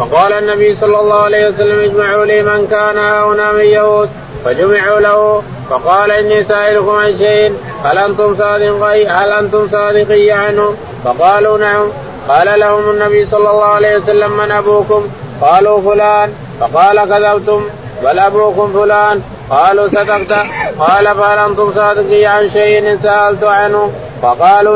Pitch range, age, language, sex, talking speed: 205-210 Hz, 30-49, Arabic, male, 130 wpm